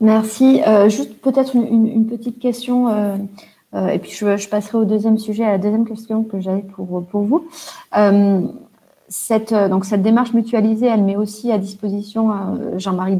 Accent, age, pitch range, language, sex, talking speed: French, 30-49, 180-225 Hz, French, female, 185 wpm